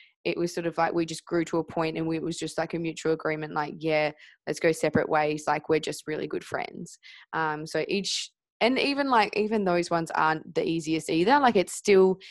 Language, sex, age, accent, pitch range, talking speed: English, female, 20-39, Australian, 160-180 Hz, 230 wpm